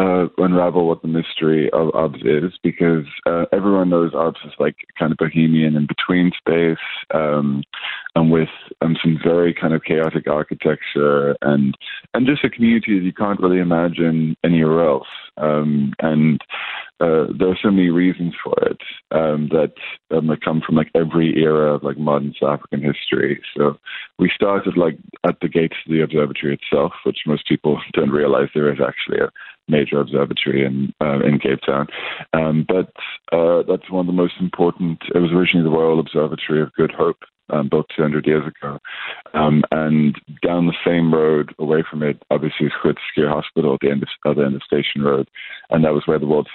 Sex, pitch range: male, 75-85 Hz